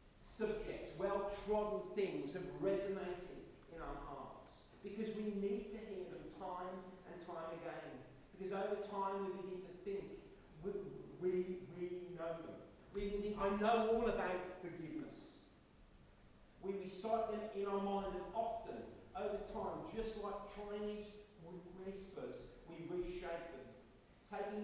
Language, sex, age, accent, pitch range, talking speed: English, male, 40-59, British, 160-200 Hz, 135 wpm